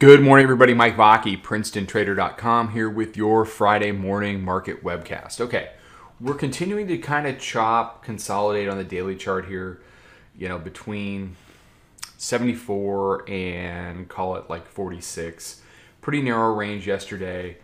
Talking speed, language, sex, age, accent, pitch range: 135 wpm, English, male, 30-49, American, 95-110 Hz